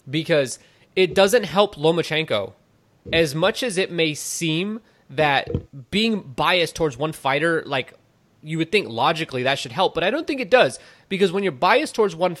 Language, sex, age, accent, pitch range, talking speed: English, male, 20-39, American, 155-195 Hz, 180 wpm